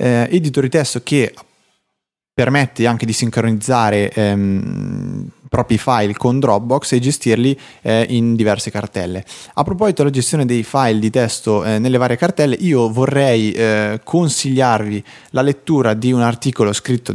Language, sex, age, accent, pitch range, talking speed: Italian, male, 20-39, native, 110-130 Hz, 145 wpm